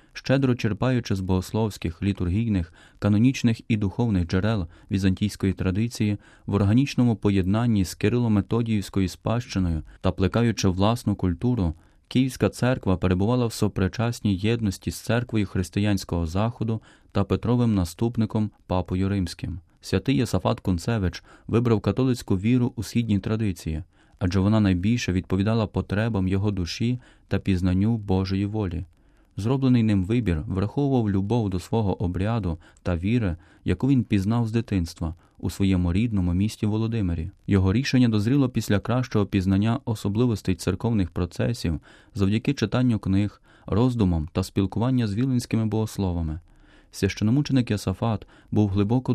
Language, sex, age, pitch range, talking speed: Ukrainian, male, 30-49, 95-115 Hz, 120 wpm